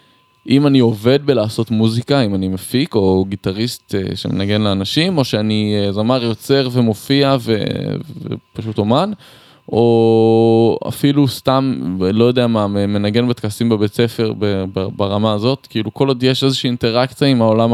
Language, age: Hebrew, 20-39